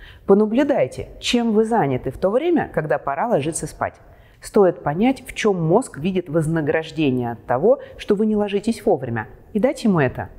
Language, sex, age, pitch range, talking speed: Russian, female, 30-49, 130-210 Hz, 170 wpm